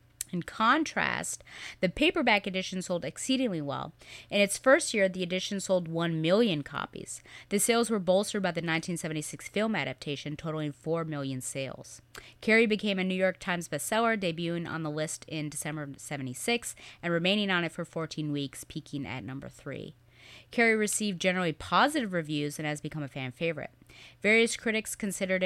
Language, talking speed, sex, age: English, 165 wpm, female, 30-49